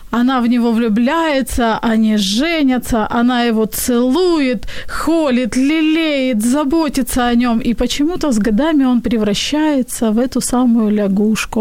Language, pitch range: Ukrainian, 220-270 Hz